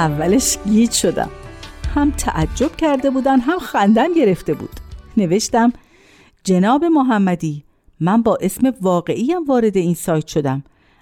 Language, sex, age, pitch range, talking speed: Persian, female, 50-69, 160-250 Hz, 125 wpm